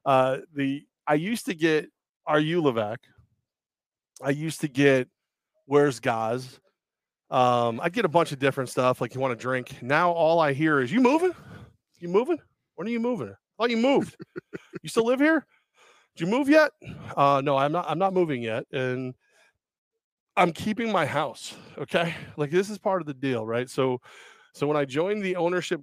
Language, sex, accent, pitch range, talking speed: English, male, American, 130-165 Hz, 190 wpm